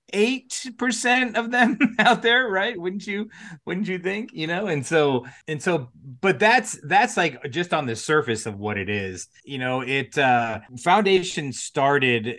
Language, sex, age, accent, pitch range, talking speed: English, male, 30-49, American, 115-155 Hz, 175 wpm